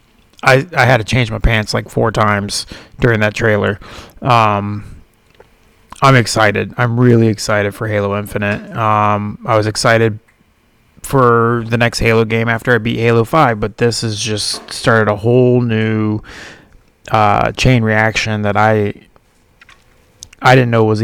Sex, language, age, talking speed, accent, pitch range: male, English, 30-49, 150 wpm, American, 105-125 Hz